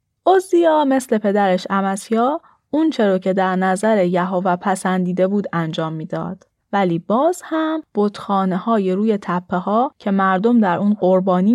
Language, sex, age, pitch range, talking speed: Persian, female, 10-29, 190-255 Hz, 140 wpm